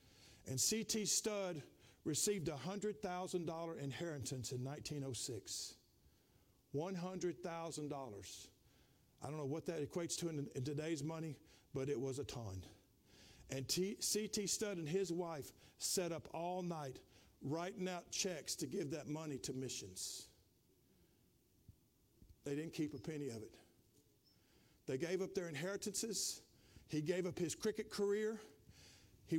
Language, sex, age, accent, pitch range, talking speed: English, male, 50-69, American, 140-205 Hz, 130 wpm